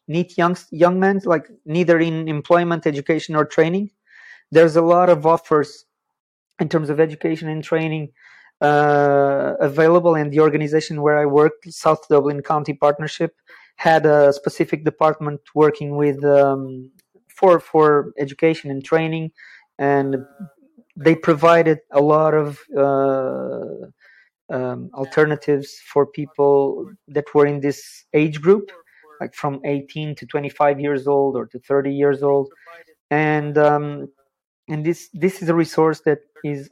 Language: English